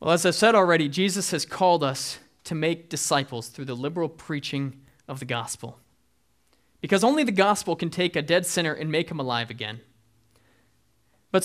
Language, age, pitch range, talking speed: English, 20-39, 130-190 Hz, 180 wpm